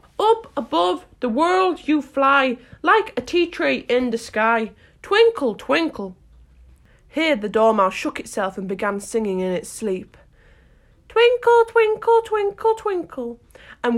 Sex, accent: female, British